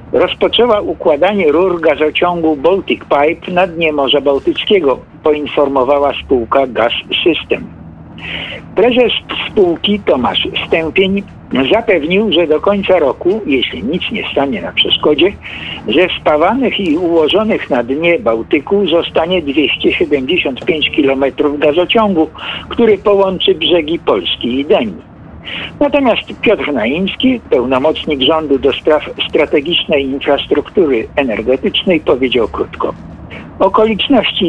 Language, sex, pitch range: Polish, male, 150-230 Hz